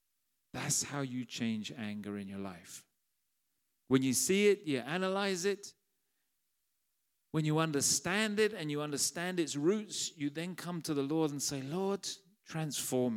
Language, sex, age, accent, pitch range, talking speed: English, male, 40-59, British, 130-195 Hz, 155 wpm